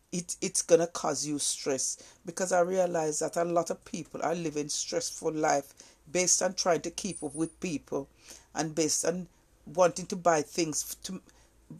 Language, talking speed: English, 180 wpm